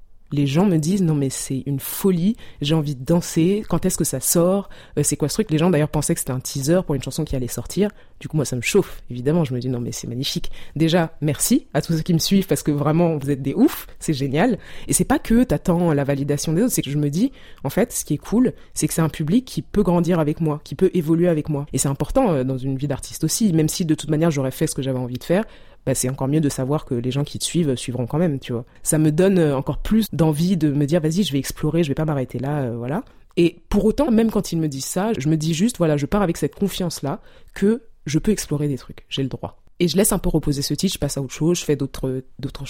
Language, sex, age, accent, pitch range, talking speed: French, female, 20-39, French, 140-175 Hz, 290 wpm